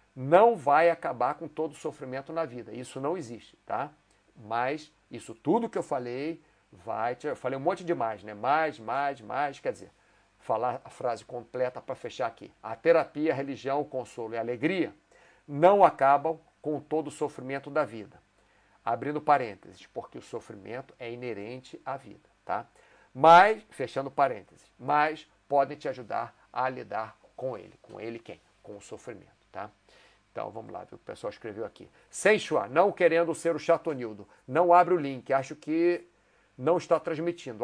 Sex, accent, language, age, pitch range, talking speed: male, Brazilian, Portuguese, 50-69, 125-165 Hz, 170 wpm